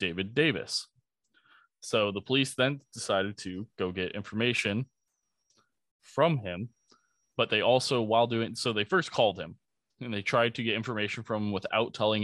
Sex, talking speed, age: male, 160 wpm, 20-39